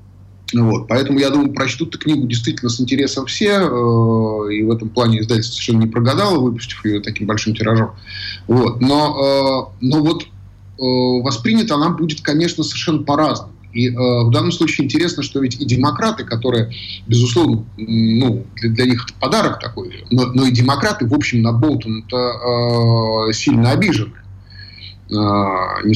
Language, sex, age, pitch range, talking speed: Russian, male, 30-49, 110-130 Hz, 145 wpm